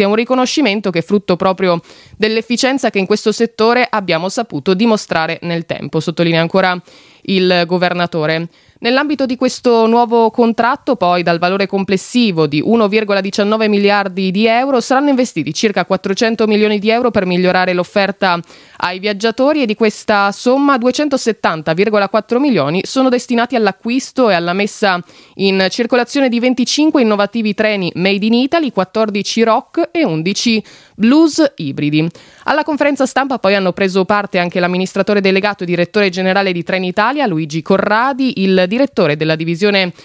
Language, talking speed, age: Italian, 140 wpm, 20-39